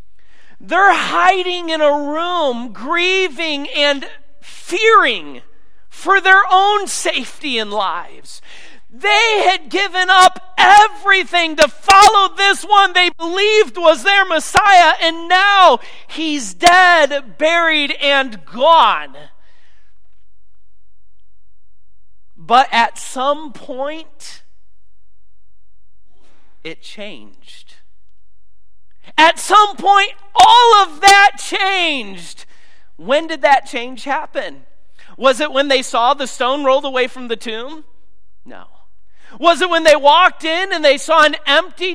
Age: 40-59